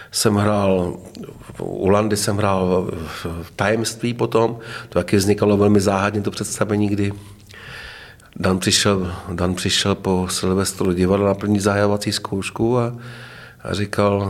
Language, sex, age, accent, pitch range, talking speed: Czech, male, 40-59, native, 100-115 Hz, 125 wpm